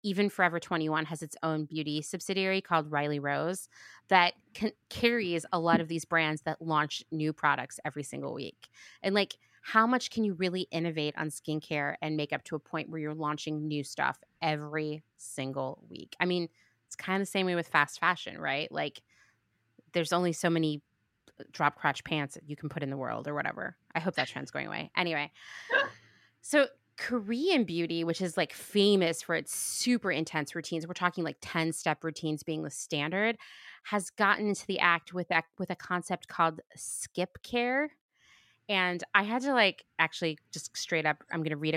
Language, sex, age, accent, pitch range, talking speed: English, female, 20-39, American, 150-185 Hz, 190 wpm